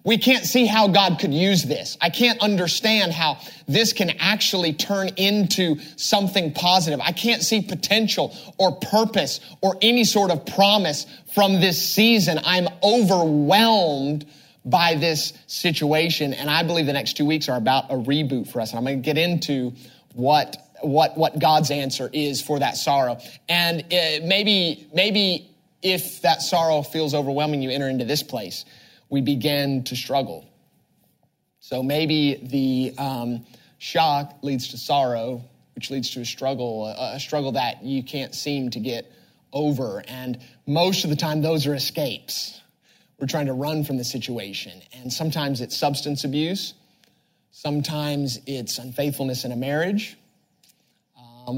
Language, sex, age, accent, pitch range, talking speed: English, male, 30-49, American, 135-180 Hz, 155 wpm